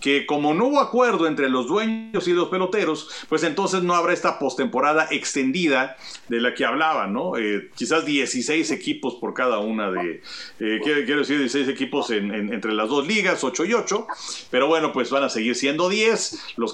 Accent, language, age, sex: Mexican, Spanish, 50-69, male